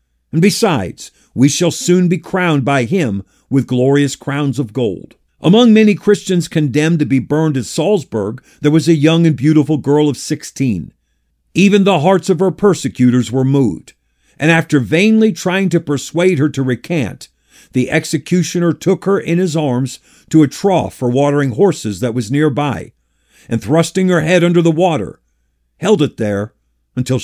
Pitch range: 125-170 Hz